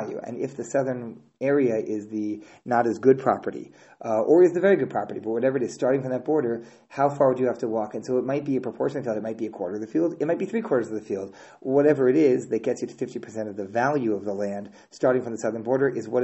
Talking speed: 280 wpm